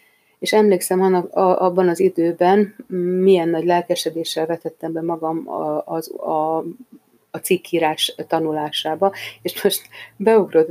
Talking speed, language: 110 wpm, Hungarian